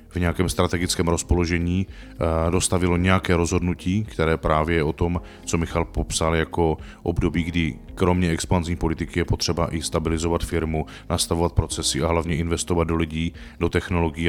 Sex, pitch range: male, 80-95 Hz